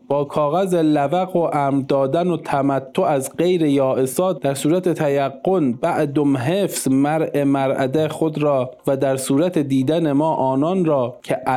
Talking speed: 145 wpm